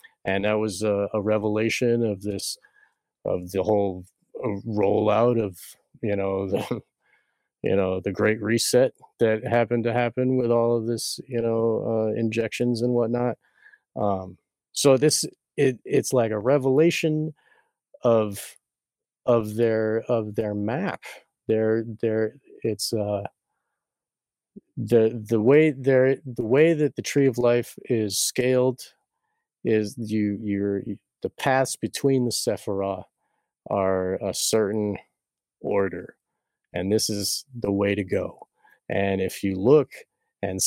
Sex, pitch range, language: male, 105-125 Hz, English